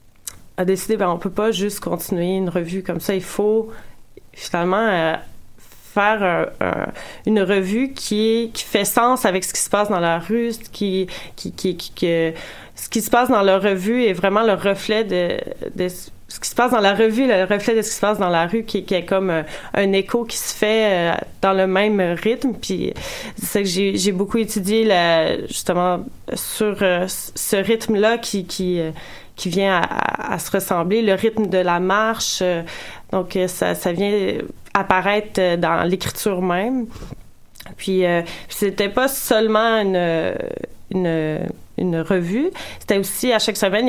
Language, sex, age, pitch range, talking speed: French, female, 30-49, 185-220 Hz, 185 wpm